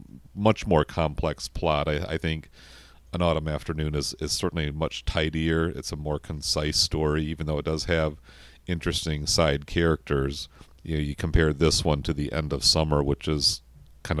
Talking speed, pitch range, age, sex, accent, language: 175 wpm, 75-85 Hz, 40-59, male, American, English